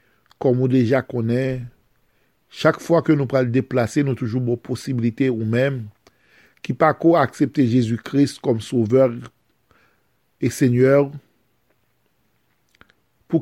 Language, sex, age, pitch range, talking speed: French, male, 50-69, 125-145 Hz, 115 wpm